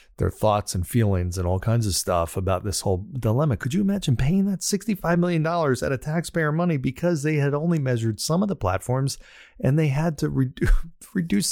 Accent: American